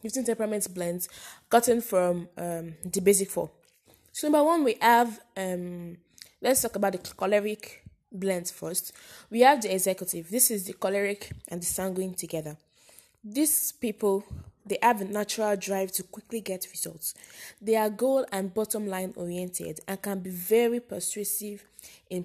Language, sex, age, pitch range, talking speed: English, female, 20-39, 180-235 Hz, 155 wpm